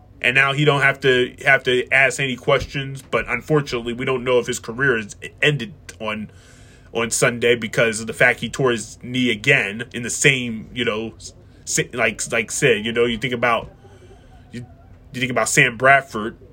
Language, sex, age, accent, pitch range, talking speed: English, male, 20-39, American, 115-140 Hz, 190 wpm